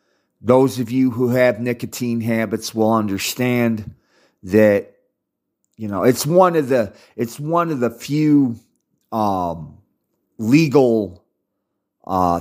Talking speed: 115 wpm